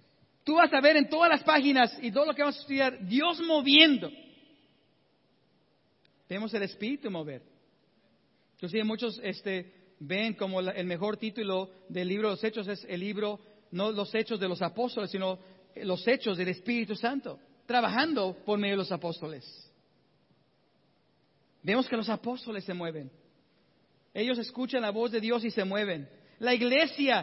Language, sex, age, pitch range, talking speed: English, male, 50-69, 180-260 Hz, 160 wpm